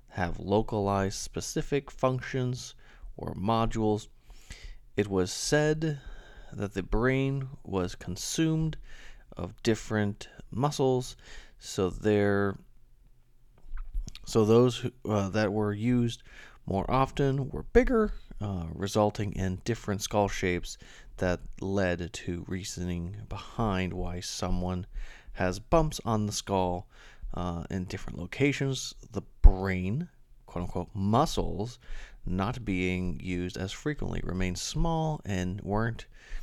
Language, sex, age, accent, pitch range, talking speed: English, male, 30-49, American, 95-120 Hz, 105 wpm